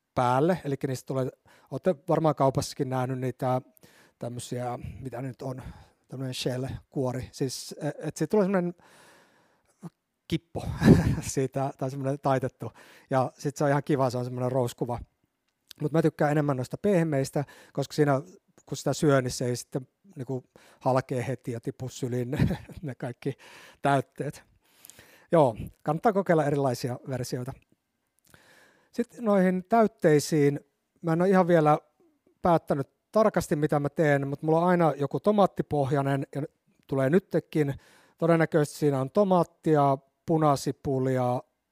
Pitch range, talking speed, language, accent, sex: 130-160 Hz, 135 wpm, Finnish, native, male